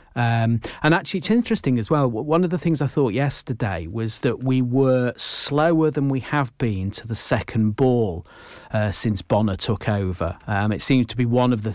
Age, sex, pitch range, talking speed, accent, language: 40-59, male, 110-130 Hz, 205 wpm, British, English